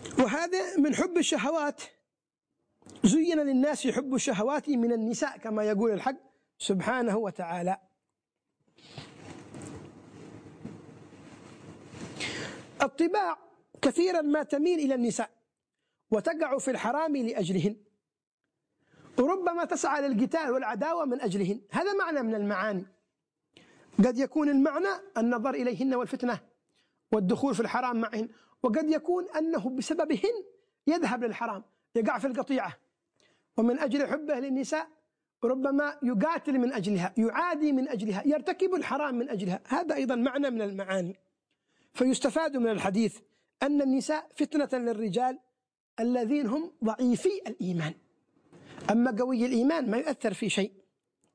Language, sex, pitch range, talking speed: Arabic, male, 225-300 Hz, 110 wpm